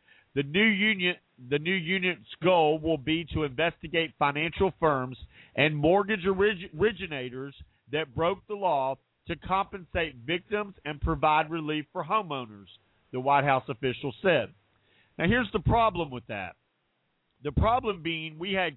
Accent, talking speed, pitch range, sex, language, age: American, 135 wpm, 130-175 Hz, male, English, 50-69